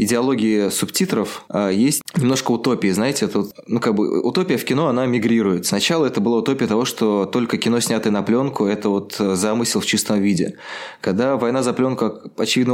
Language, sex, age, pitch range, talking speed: Russian, male, 20-39, 100-120 Hz, 175 wpm